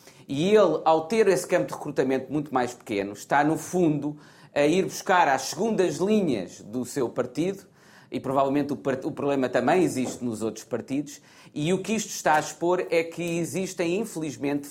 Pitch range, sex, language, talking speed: 140-185 Hz, male, Portuguese, 185 wpm